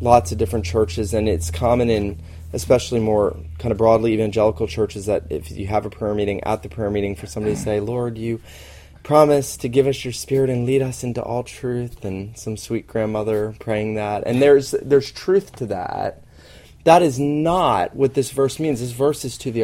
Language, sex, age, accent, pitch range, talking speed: English, male, 20-39, American, 105-140 Hz, 210 wpm